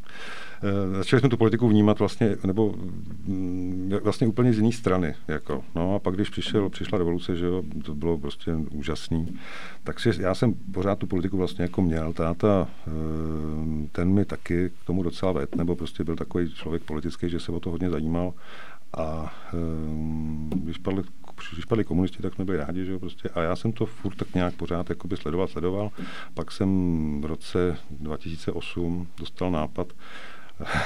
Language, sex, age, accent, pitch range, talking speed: Czech, male, 50-69, native, 85-100 Hz, 170 wpm